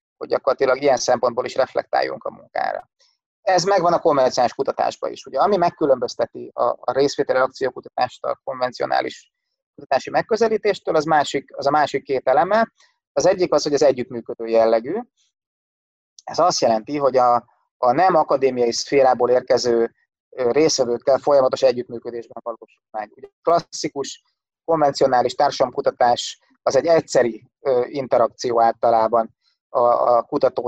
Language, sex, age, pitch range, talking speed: Hungarian, male, 30-49, 125-165 Hz, 125 wpm